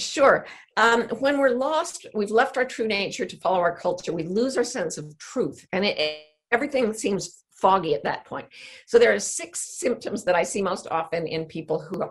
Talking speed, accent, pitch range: 210 wpm, American, 175-255 Hz